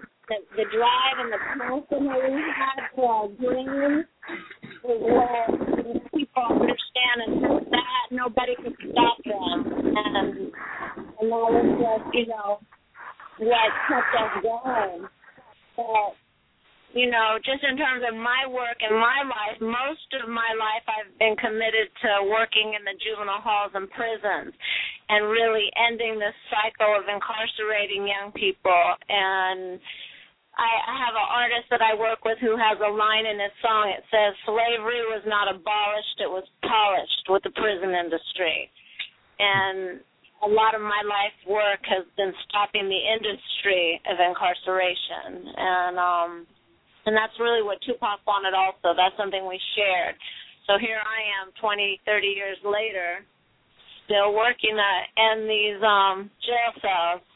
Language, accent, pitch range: English, American, 200-235 Hz